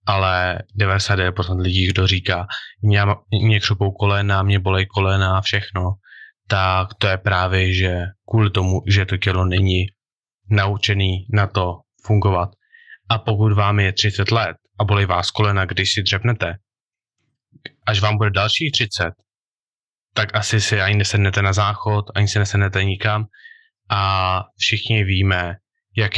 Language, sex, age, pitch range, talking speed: Czech, male, 20-39, 95-105 Hz, 140 wpm